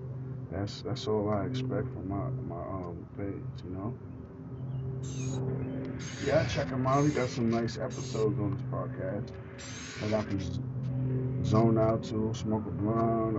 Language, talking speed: English, 150 wpm